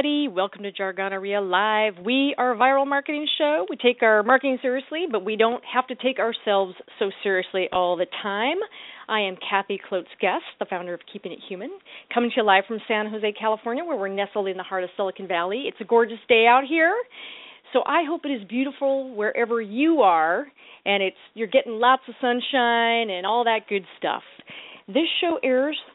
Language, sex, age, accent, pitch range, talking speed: English, female, 40-59, American, 200-275 Hz, 195 wpm